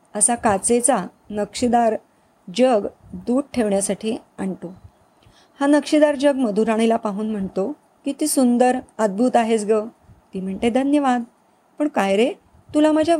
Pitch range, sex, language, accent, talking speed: 205-270 Hz, female, Marathi, native, 120 wpm